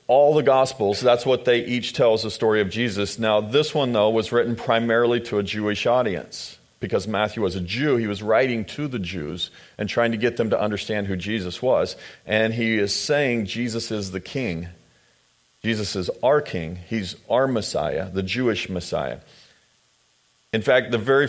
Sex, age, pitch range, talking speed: male, 40-59, 100-120 Hz, 185 wpm